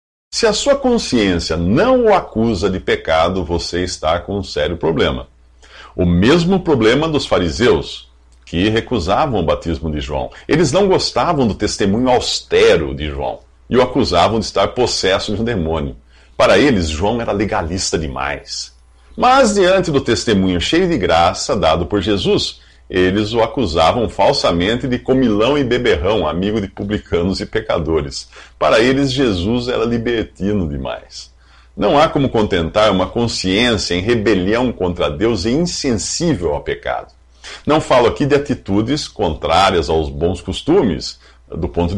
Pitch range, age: 80-130 Hz, 50-69